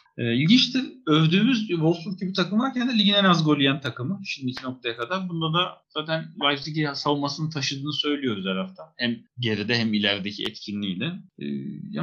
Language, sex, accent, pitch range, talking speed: Turkish, male, native, 125-180 Hz, 140 wpm